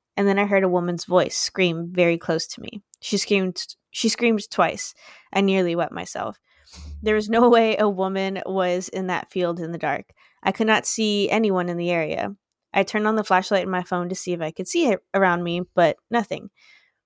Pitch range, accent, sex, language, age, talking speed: 175-210 Hz, American, female, English, 20-39, 215 wpm